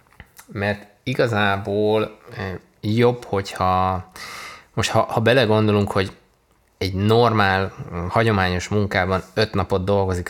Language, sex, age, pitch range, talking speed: Hungarian, male, 20-39, 95-110 Hz, 95 wpm